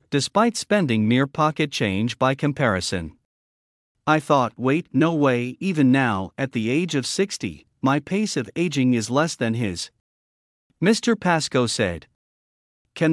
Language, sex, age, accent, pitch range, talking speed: English, male, 50-69, American, 115-170 Hz, 140 wpm